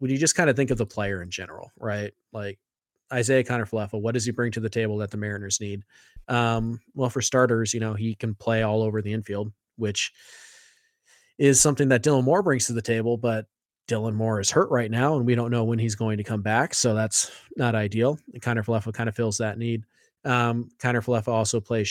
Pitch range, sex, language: 110-125 Hz, male, English